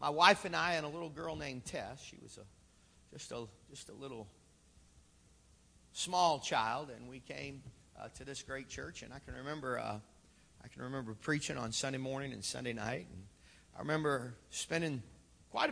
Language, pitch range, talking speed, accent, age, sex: English, 110-145 Hz, 185 wpm, American, 40-59, male